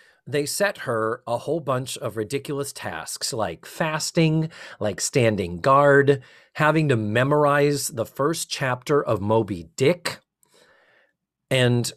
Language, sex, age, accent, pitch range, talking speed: English, male, 40-59, American, 120-165 Hz, 120 wpm